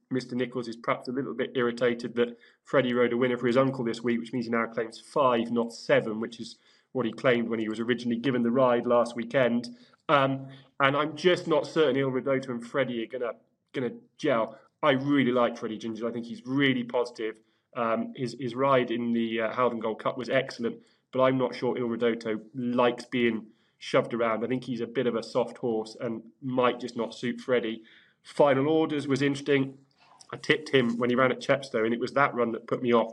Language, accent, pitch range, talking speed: English, British, 115-135 Hz, 220 wpm